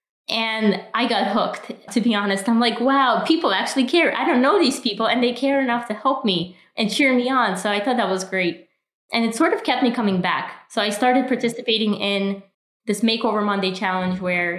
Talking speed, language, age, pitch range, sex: 220 wpm, English, 20-39, 190-240 Hz, female